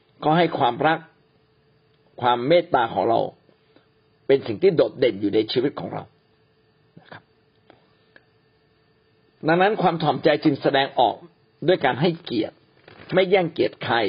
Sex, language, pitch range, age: male, Thai, 135-175 Hz, 60-79